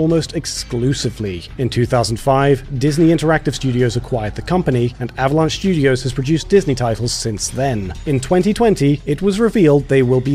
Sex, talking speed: male, 155 wpm